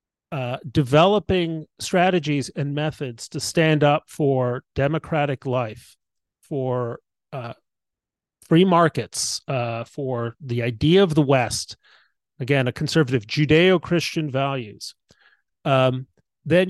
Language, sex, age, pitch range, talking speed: English, male, 30-49, 125-155 Hz, 105 wpm